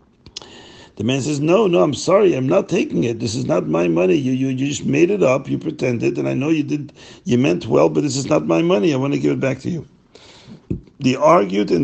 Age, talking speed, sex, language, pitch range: 60-79, 255 wpm, male, English, 120-165 Hz